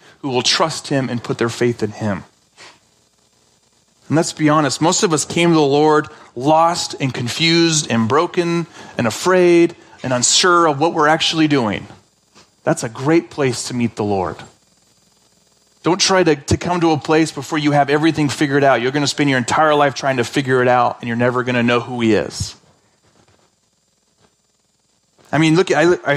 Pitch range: 125-165 Hz